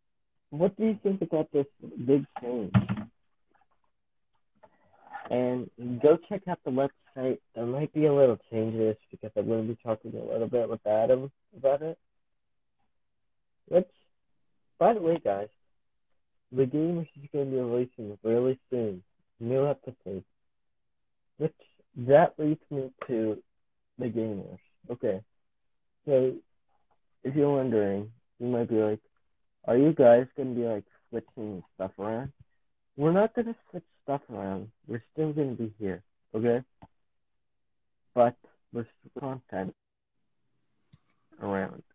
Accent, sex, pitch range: American, male, 110-145 Hz